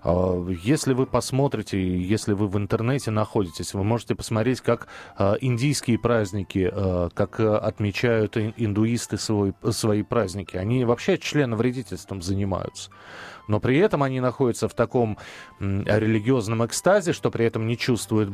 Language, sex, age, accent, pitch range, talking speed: Russian, male, 30-49, native, 110-160 Hz, 120 wpm